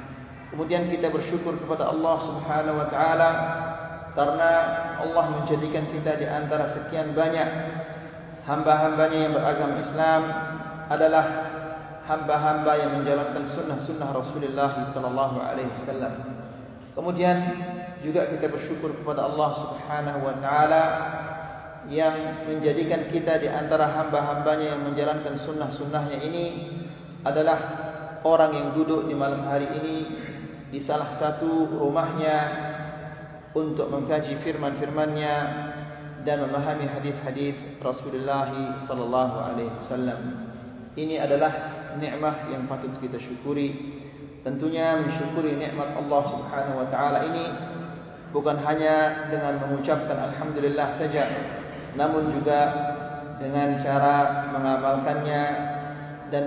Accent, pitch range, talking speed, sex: native, 140-155 Hz, 105 wpm, male